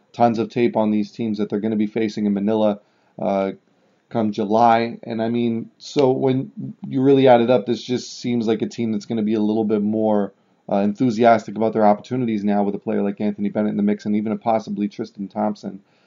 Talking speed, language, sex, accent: 230 wpm, English, male, American